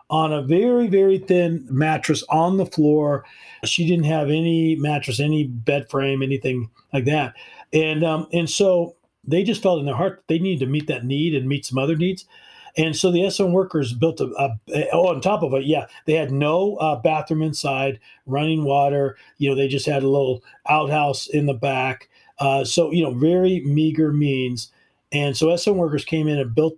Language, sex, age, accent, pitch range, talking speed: English, male, 40-59, American, 135-160 Hz, 205 wpm